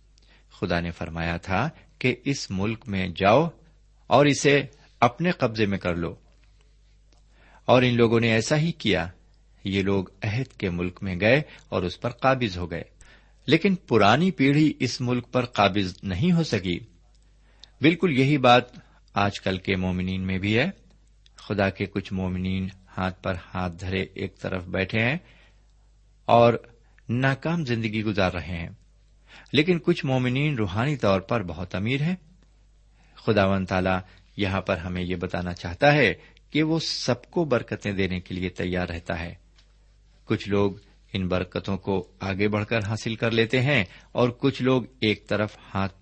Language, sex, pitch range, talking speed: Urdu, male, 95-125 Hz, 160 wpm